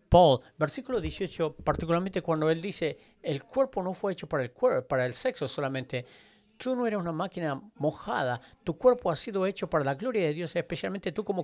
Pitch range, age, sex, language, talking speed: 140-185 Hz, 50-69, male, English, 200 wpm